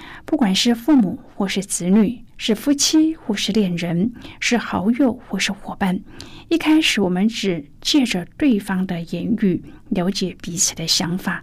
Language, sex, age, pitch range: Chinese, female, 50-69, 185-245 Hz